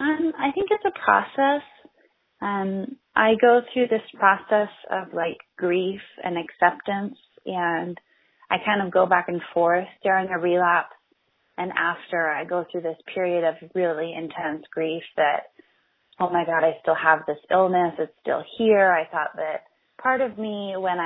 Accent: American